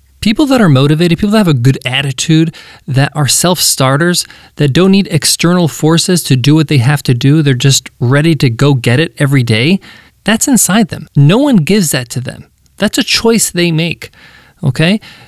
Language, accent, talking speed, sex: English, American, 195 wpm, male